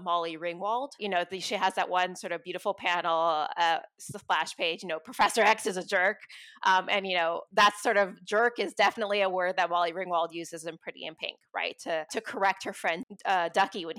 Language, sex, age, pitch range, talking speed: English, female, 20-39, 175-205 Hz, 225 wpm